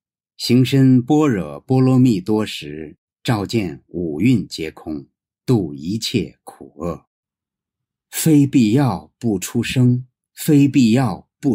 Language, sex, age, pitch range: Chinese, male, 50-69, 115-170 Hz